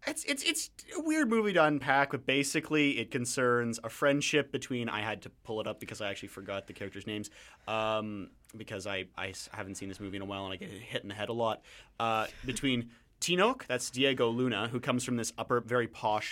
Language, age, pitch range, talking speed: English, 30-49, 105-140 Hz, 225 wpm